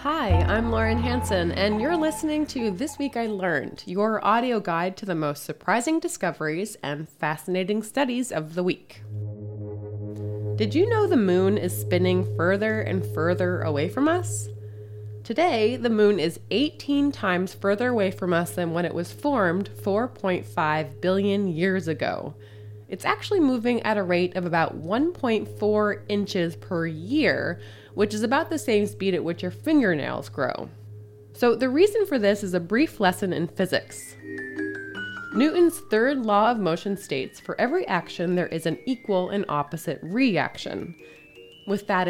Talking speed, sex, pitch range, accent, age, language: 155 wpm, female, 150-230 Hz, American, 20-39, English